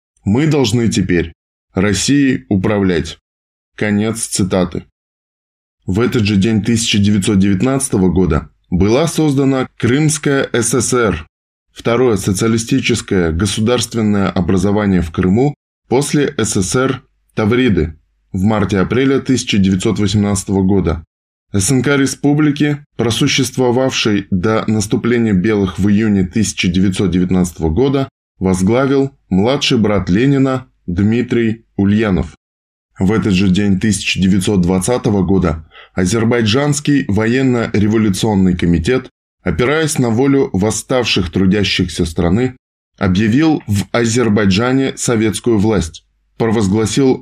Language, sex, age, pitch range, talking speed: Russian, male, 10-29, 95-125 Hz, 85 wpm